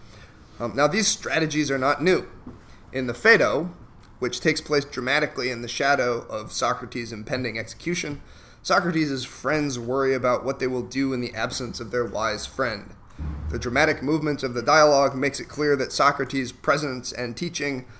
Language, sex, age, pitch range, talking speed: English, male, 30-49, 120-145 Hz, 165 wpm